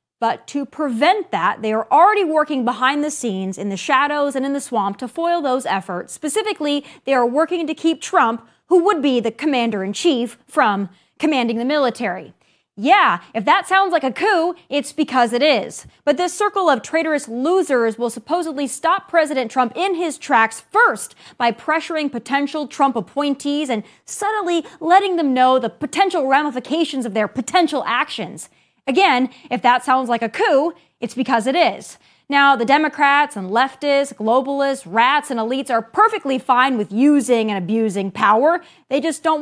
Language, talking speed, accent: English, 170 wpm, American